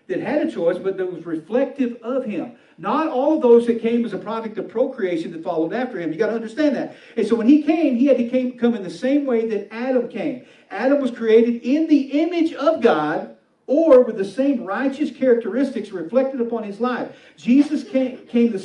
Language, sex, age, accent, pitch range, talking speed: English, male, 50-69, American, 215-280 Hz, 220 wpm